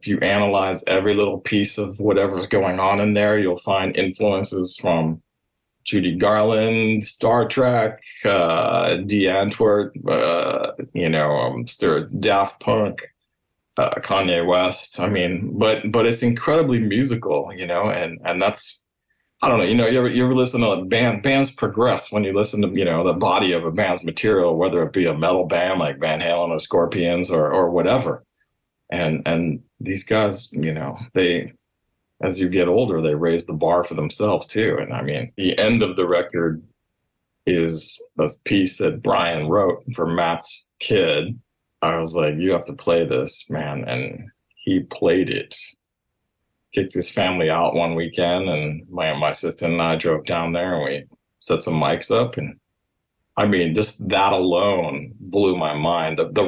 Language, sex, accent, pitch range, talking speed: English, male, American, 85-110 Hz, 175 wpm